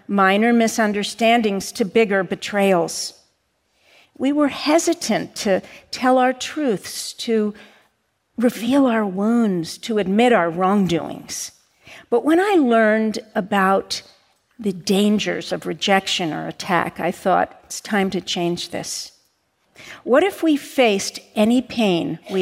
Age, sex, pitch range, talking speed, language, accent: 50-69, female, 185-235 Hz, 120 wpm, English, American